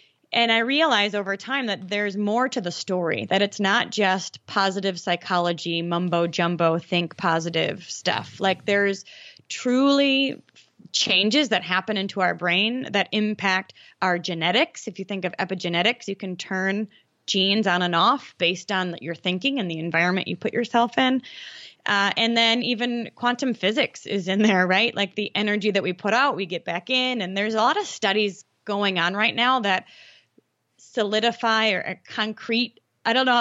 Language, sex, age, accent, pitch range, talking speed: English, female, 20-39, American, 185-230 Hz, 175 wpm